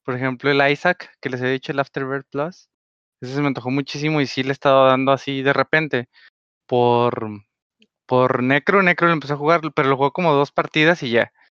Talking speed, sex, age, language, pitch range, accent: 210 wpm, male, 20-39, Spanish, 130-160 Hz, Mexican